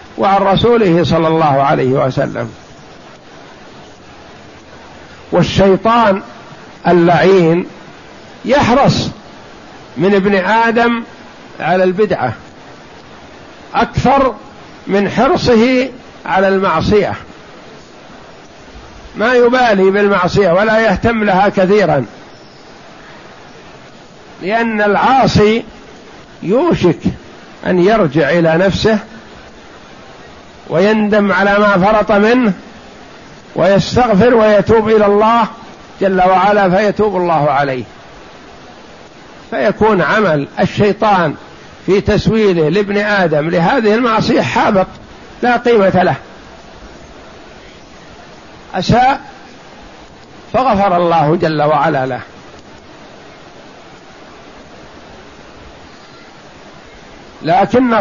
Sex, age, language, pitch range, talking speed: male, 60-79, Arabic, 180-220 Hz, 70 wpm